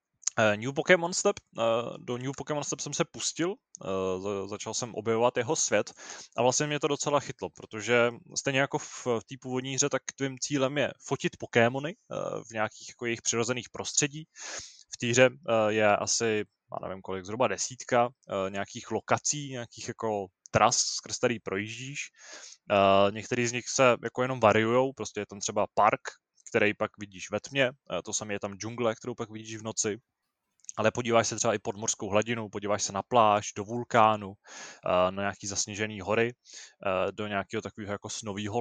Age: 20-39